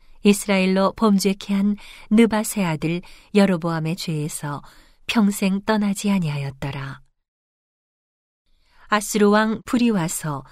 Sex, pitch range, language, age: female, 165-215 Hz, Korean, 40-59